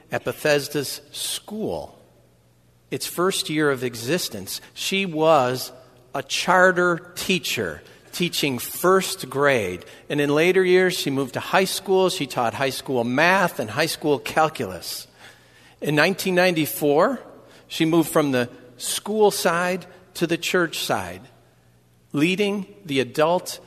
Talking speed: 125 wpm